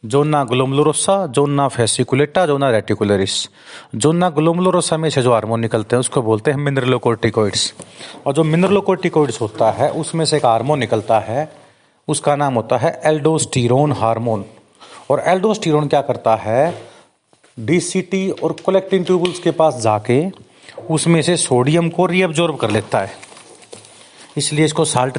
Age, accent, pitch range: 30-49, native, 120-160 Hz